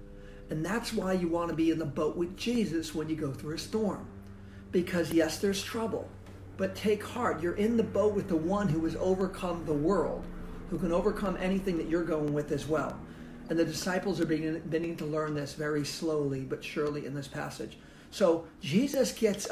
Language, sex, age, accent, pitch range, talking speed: English, male, 50-69, American, 155-200 Hz, 195 wpm